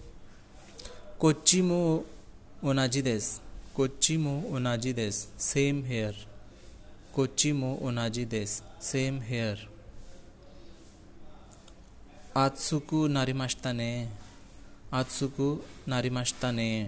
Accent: Indian